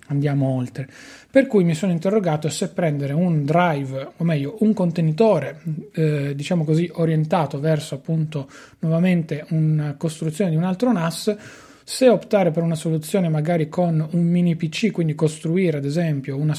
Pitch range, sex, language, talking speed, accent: 150-175 Hz, male, Italian, 155 wpm, native